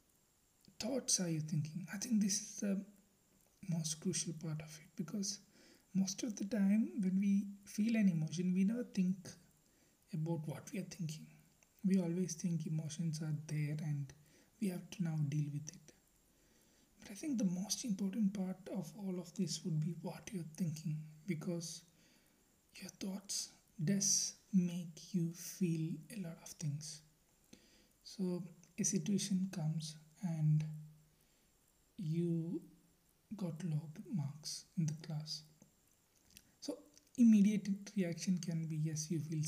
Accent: Indian